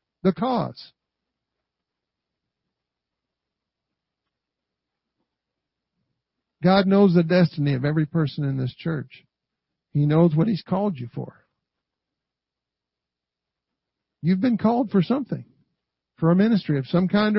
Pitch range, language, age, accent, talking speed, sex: 140-210 Hz, English, 50-69, American, 105 wpm, male